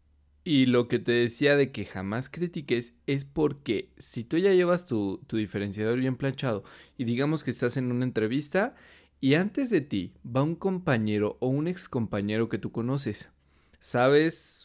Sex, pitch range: male, 100-140 Hz